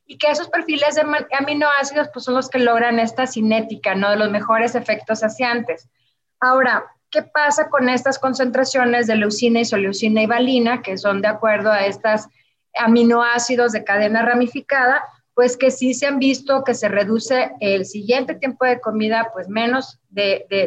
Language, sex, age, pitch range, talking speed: Spanish, female, 30-49, 225-280 Hz, 170 wpm